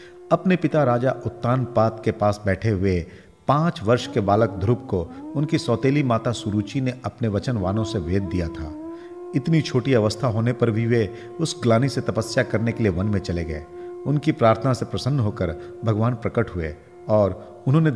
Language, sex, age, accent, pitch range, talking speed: Hindi, male, 50-69, native, 100-130 Hz, 175 wpm